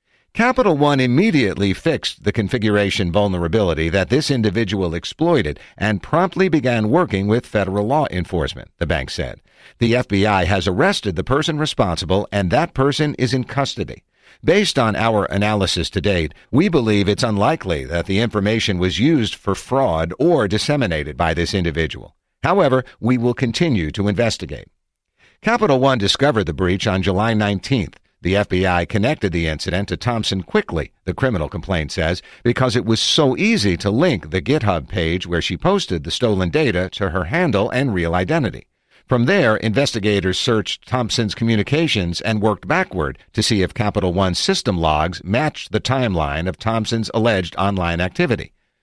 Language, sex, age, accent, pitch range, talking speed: English, male, 50-69, American, 95-125 Hz, 160 wpm